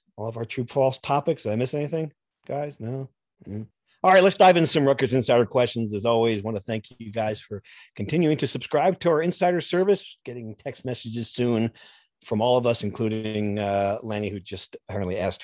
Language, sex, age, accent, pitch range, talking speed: English, male, 40-59, American, 115-155 Hz, 205 wpm